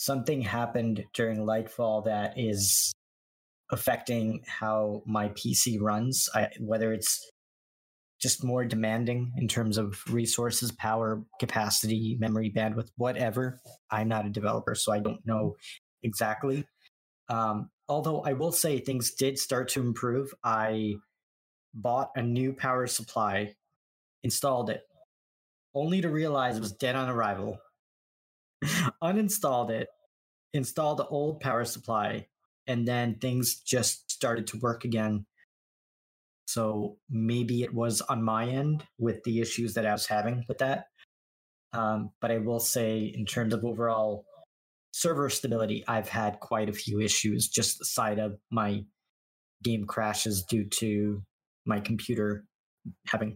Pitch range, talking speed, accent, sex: 105-125 Hz, 135 wpm, American, male